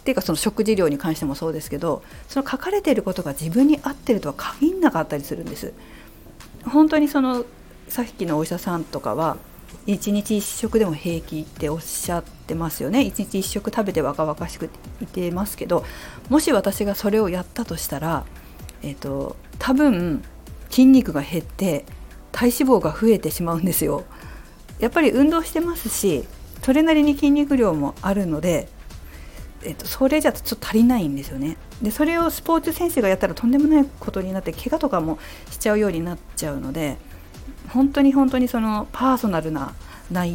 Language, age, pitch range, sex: Japanese, 40-59, 160-265 Hz, female